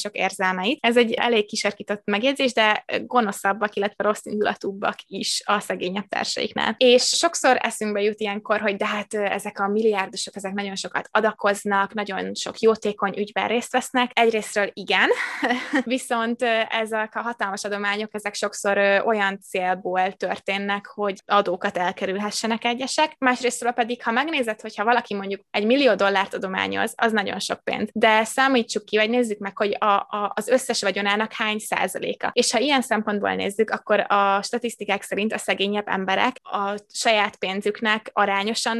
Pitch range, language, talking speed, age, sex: 200-235 Hz, Hungarian, 150 wpm, 20-39, female